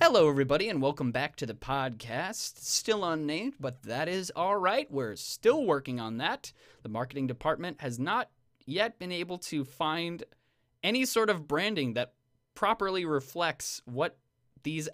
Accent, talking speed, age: American, 155 wpm, 20-39